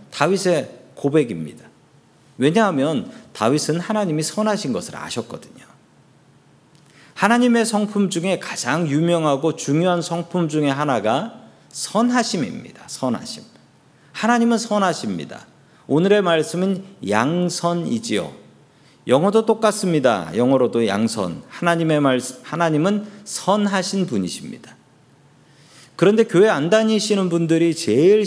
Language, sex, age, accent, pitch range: Korean, male, 40-59, native, 135-205 Hz